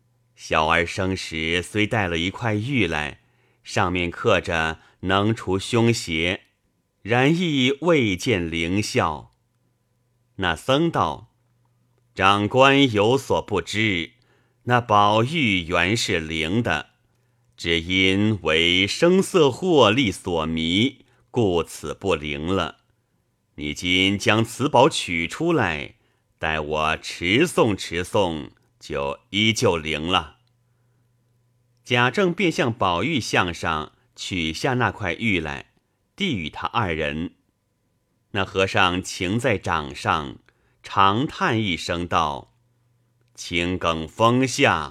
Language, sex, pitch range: Chinese, male, 85-120 Hz